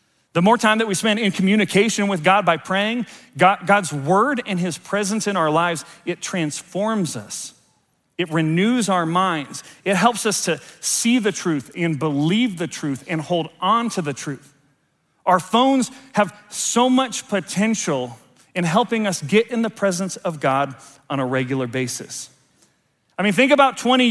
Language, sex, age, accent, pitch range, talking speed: English, male, 40-59, American, 160-215 Hz, 170 wpm